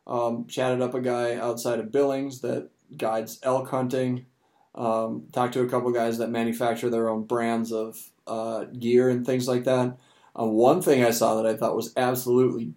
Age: 30-49